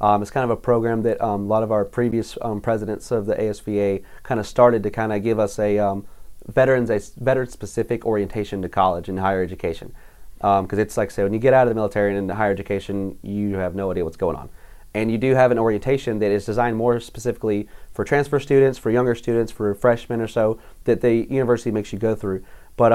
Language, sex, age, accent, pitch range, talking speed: English, male, 30-49, American, 105-120 Hz, 225 wpm